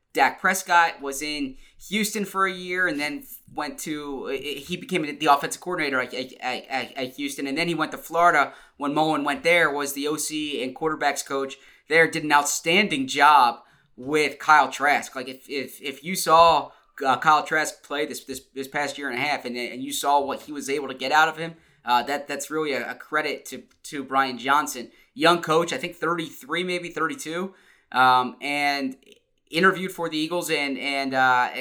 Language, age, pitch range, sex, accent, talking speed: English, 20-39, 140-175 Hz, male, American, 195 wpm